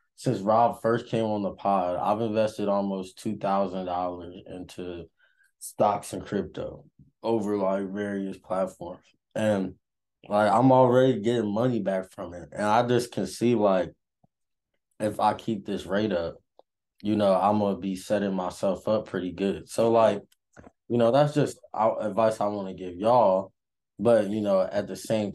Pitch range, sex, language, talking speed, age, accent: 95-115 Hz, male, English, 165 wpm, 20-39, American